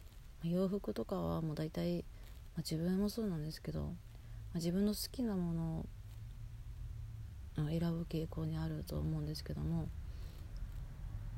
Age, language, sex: 30-49, Japanese, female